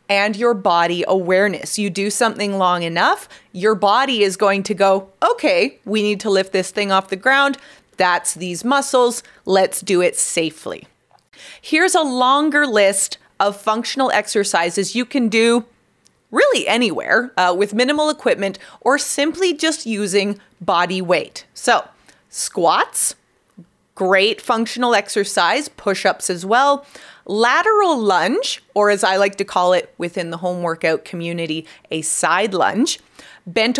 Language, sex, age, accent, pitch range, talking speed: English, female, 30-49, American, 190-240 Hz, 145 wpm